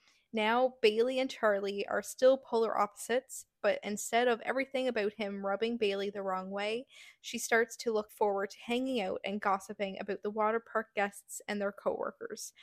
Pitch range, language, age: 200-240 Hz, English, 20-39